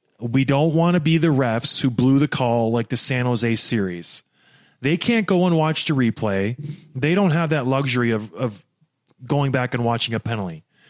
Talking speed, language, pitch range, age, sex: 205 wpm, English, 130-175 Hz, 30-49, male